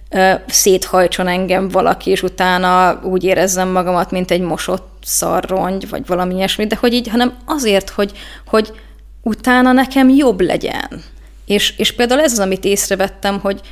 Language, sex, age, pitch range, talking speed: Hungarian, female, 20-39, 185-215 Hz, 150 wpm